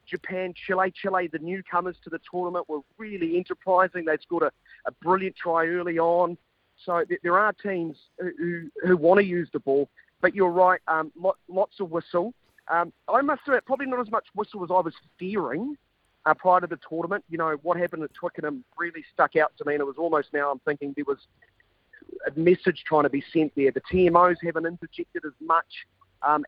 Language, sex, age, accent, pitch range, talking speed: English, male, 30-49, Australian, 145-180 Hz, 210 wpm